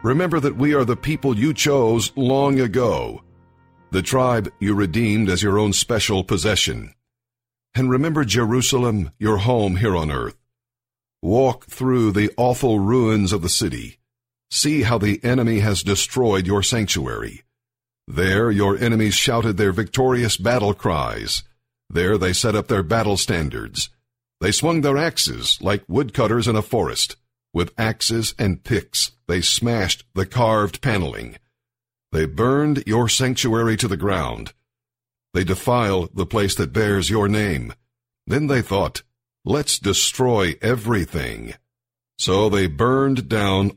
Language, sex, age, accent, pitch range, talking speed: English, male, 50-69, American, 105-125 Hz, 140 wpm